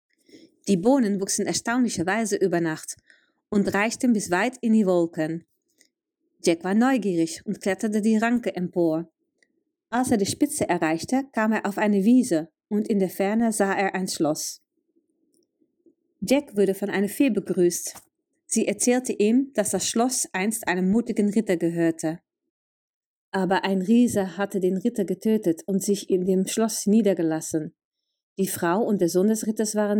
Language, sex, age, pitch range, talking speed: German, female, 30-49, 175-240 Hz, 155 wpm